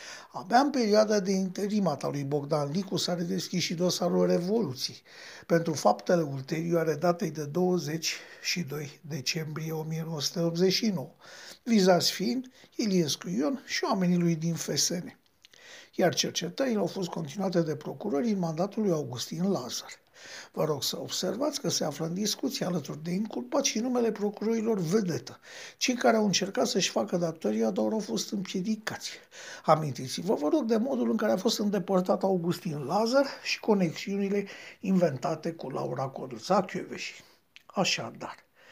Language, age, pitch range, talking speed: Romanian, 60-79, 165-225 Hz, 140 wpm